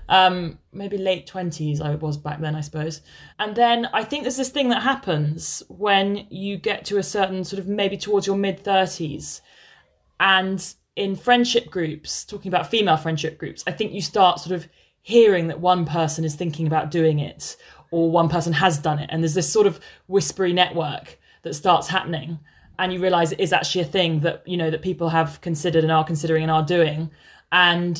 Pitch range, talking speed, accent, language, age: 160-185 Hz, 200 wpm, British, English, 20-39